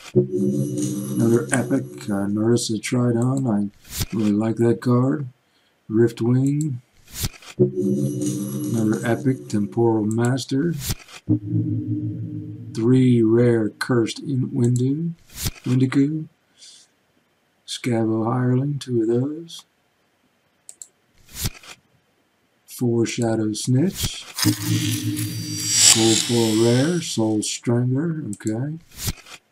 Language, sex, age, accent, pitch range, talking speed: English, male, 50-69, American, 110-130 Hz, 70 wpm